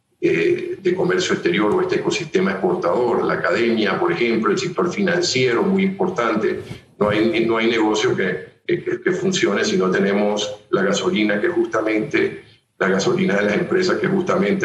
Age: 50-69